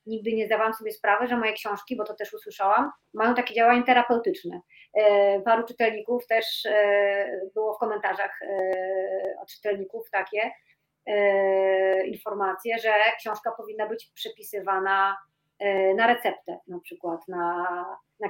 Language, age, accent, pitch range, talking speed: Polish, 30-49, native, 195-235 Hz, 140 wpm